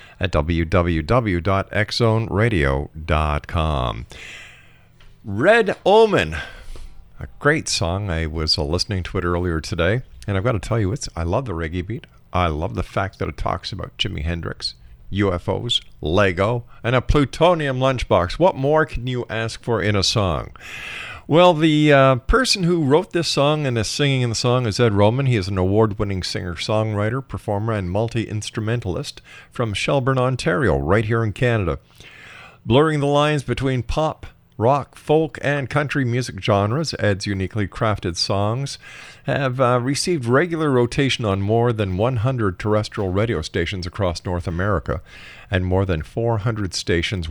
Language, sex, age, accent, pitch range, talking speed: English, male, 50-69, American, 90-125 Hz, 150 wpm